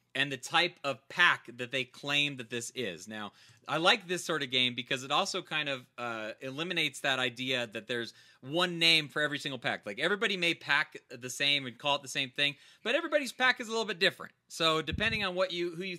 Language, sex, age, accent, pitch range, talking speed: English, male, 30-49, American, 125-160 Hz, 235 wpm